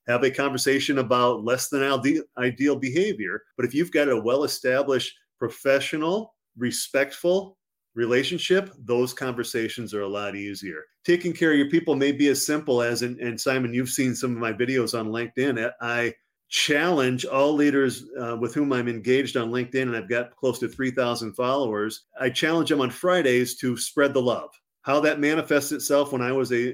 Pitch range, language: 120-140 Hz, English